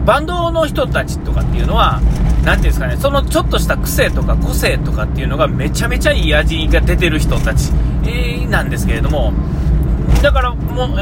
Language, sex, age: Japanese, male, 40-59